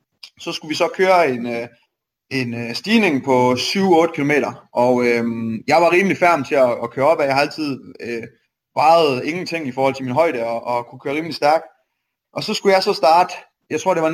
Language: Danish